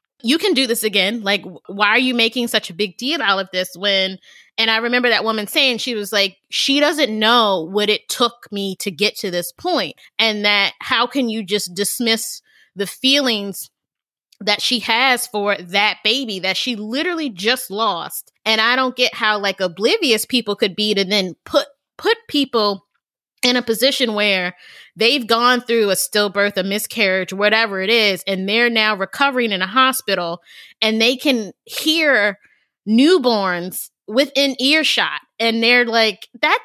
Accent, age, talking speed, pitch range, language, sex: American, 20-39, 175 wpm, 200-245 Hz, English, female